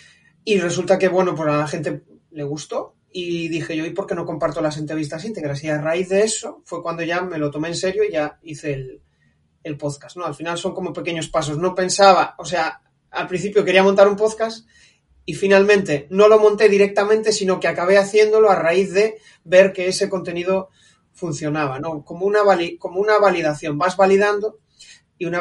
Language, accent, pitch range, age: Spanish, Spanish, 150-195 Hz, 30-49